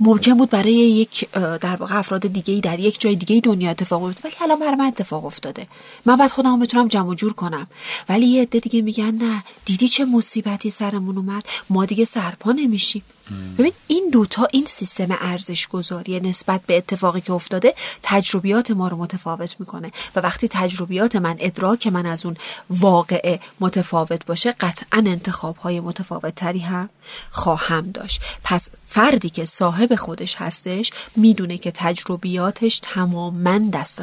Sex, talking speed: female, 160 wpm